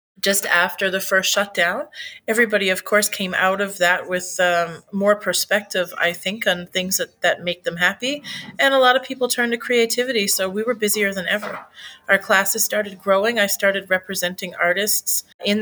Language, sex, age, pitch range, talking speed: English, female, 30-49, 185-225 Hz, 185 wpm